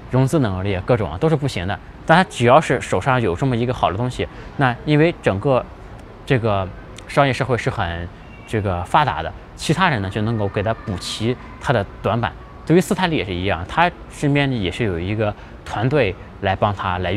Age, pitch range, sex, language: 20-39, 95-125 Hz, male, Chinese